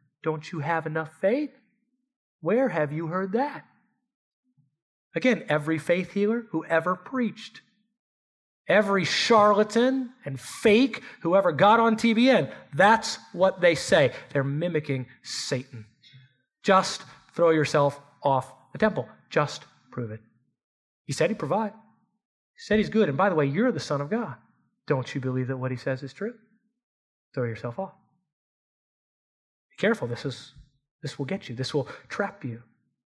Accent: American